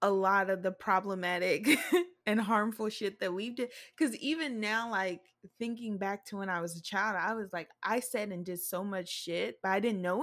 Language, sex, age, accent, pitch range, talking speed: English, female, 20-39, American, 190-245 Hz, 215 wpm